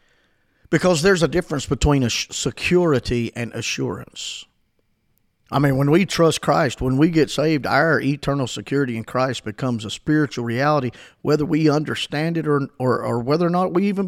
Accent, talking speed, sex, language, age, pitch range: American, 170 wpm, male, English, 50-69, 120-155 Hz